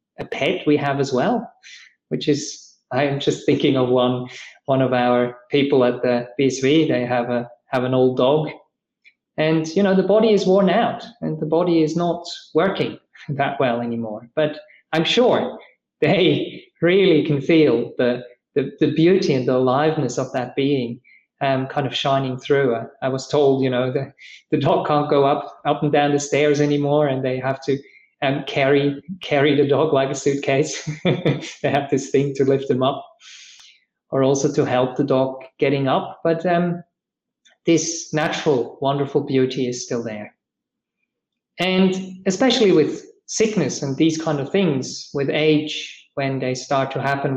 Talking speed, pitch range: 175 wpm, 130-160 Hz